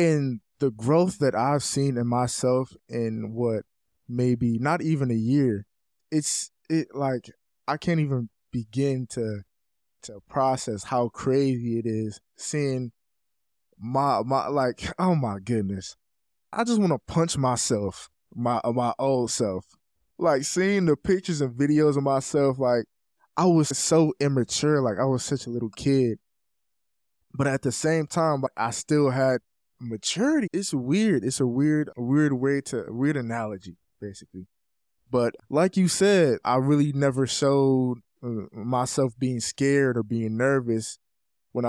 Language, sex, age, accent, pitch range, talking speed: English, male, 20-39, American, 110-140 Hz, 145 wpm